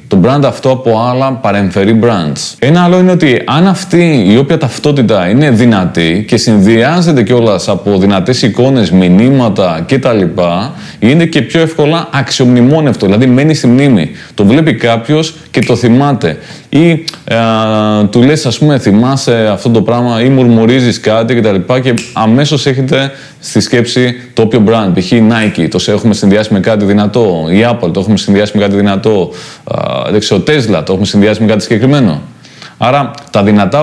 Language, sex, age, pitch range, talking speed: Greek, male, 20-39, 105-135 Hz, 160 wpm